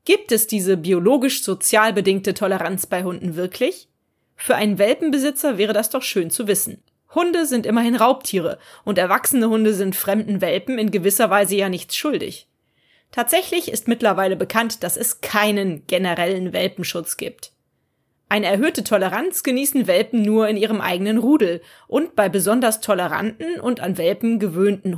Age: 30-49